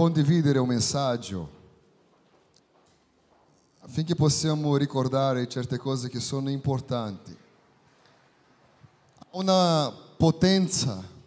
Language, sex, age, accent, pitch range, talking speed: Italian, male, 30-49, Brazilian, 135-180 Hz, 70 wpm